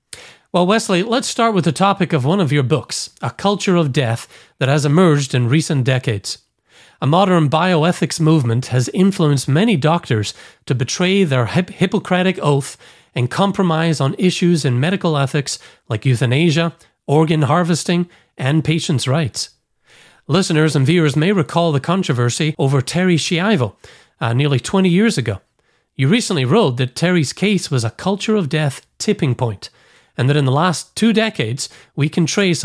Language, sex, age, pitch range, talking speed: English, male, 40-59, 135-180 Hz, 160 wpm